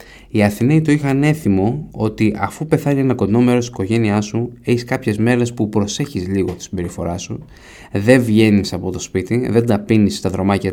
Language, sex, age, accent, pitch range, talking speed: Greek, male, 20-39, native, 100-130 Hz, 185 wpm